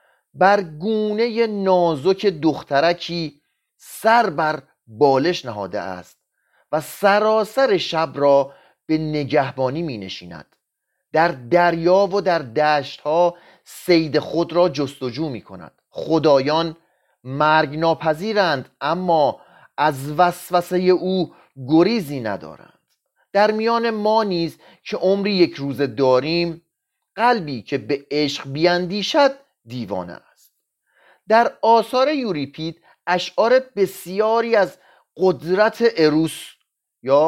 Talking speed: 100 wpm